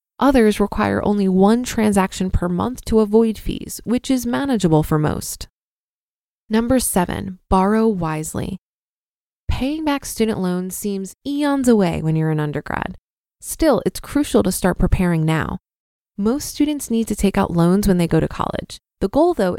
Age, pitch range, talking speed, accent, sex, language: 20-39, 180-240 Hz, 160 wpm, American, female, English